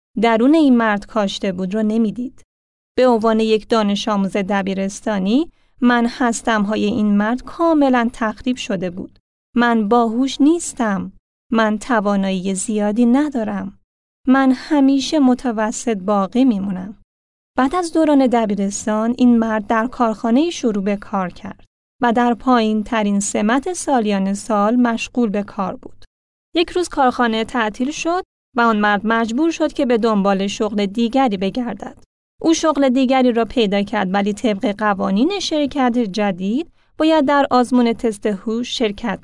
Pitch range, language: 210-260 Hz, Persian